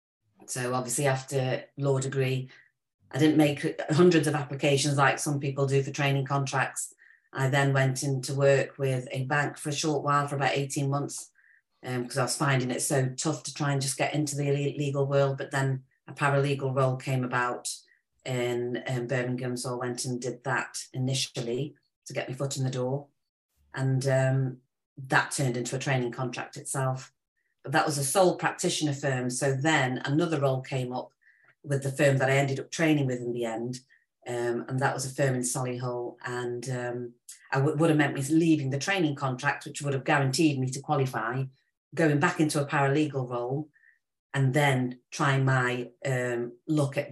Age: 40-59